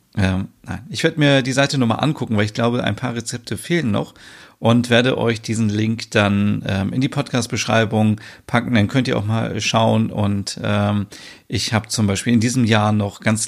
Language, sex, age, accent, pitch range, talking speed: German, male, 40-59, German, 105-120 Hz, 200 wpm